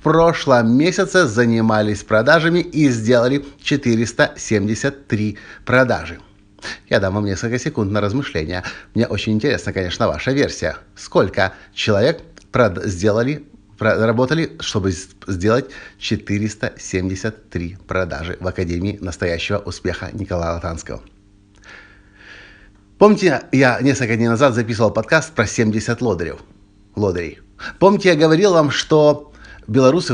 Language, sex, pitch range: Russian, male, 100-140 Hz